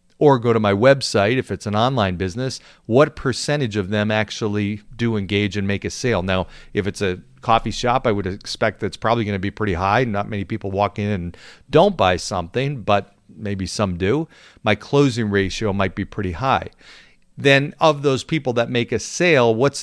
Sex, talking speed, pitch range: male, 195 wpm, 100-125 Hz